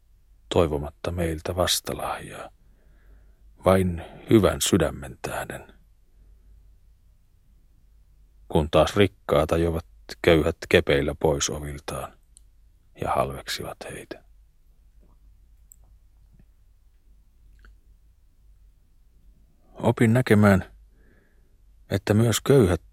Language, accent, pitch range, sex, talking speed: Finnish, native, 80-90 Hz, male, 60 wpm